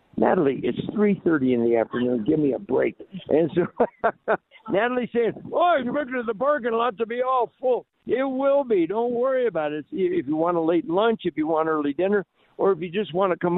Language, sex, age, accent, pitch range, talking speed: English, male, 60-79, American, 145-195 Hz, 215 wpm